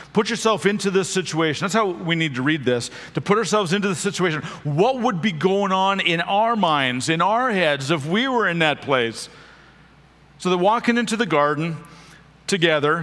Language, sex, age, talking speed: English, male, 40-59, 195 wpm